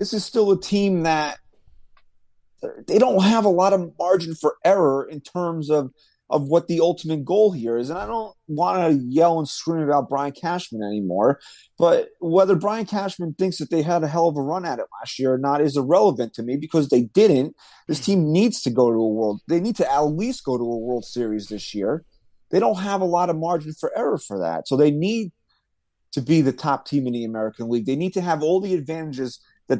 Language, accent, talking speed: English, American, 230 wpm